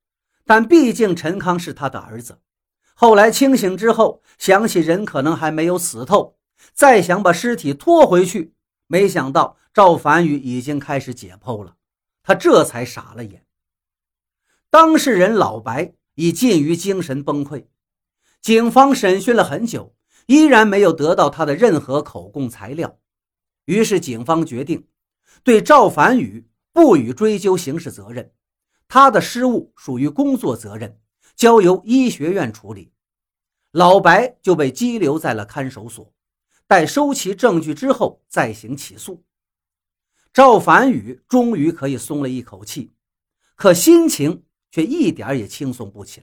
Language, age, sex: Chinese, 50-69, male